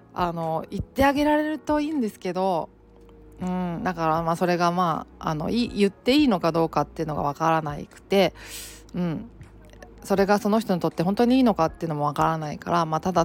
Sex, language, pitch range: female, Japanese, 160-205 Hz